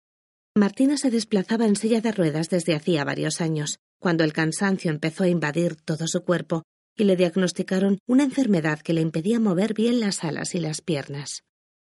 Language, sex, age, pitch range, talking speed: Spanish, female, 30-49, 160-205 Hz, 175 wpm